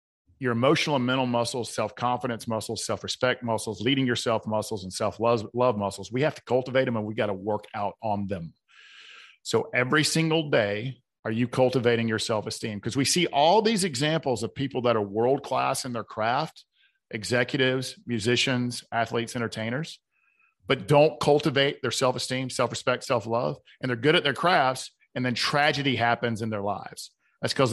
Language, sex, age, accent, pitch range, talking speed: English, male, 40-59, American, 110-135 Hz, 165 wpm